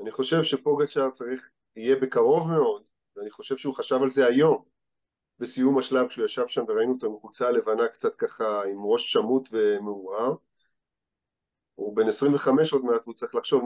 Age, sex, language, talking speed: 40-59, male, Hebrew, 165 wpm